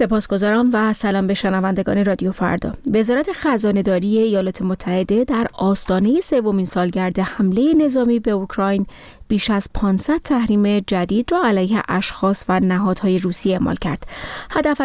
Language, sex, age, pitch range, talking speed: Persian, female, 30-49, 190-235 Hz, 135 wpm